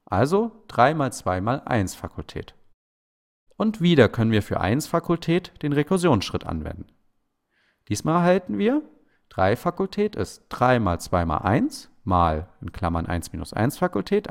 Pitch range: 95-155 Hz